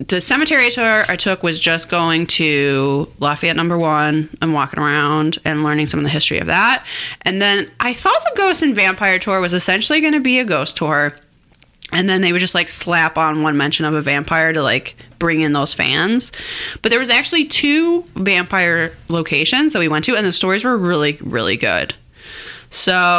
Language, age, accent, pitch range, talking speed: English, 20-39, American, 155-215 Hz, 200 wpm